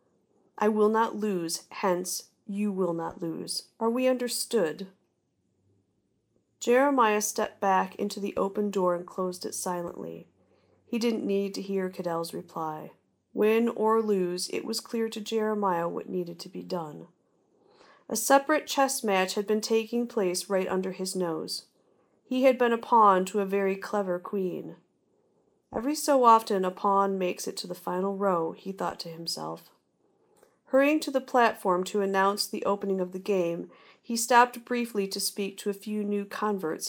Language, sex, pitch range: English, female, 185-235 Hz